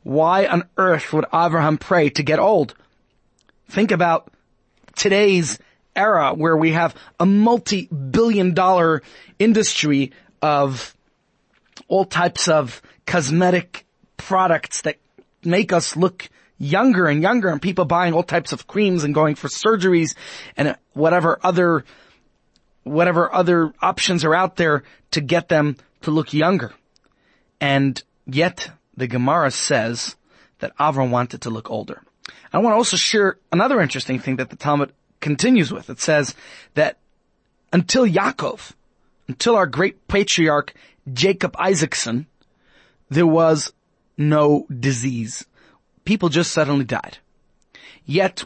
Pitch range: 145-185 Hz